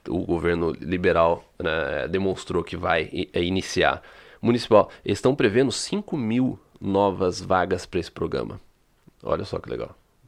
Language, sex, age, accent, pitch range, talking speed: Portuguese, male, 30-49, Brazilian, 95-125 Hz, 140 wpm